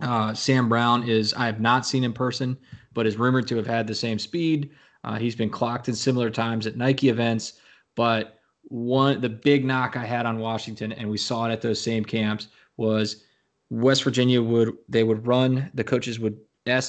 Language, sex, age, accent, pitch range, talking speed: English, male, 20-39, American, 110-125 Hz, 205 wpm